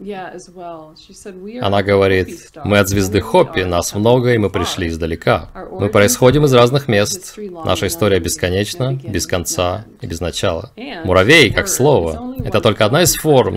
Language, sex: Russian, male